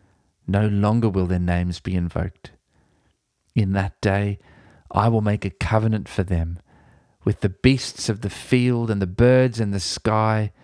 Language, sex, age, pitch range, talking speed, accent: English, male, 30-49, 95-120 Hz, 165 wpm, Australian